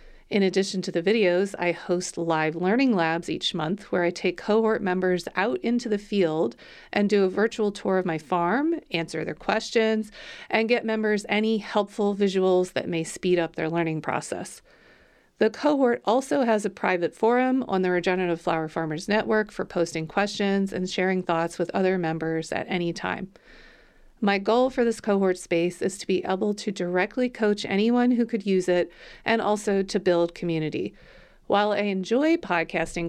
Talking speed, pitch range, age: 175 wpm, 175-220 Hz, 40-59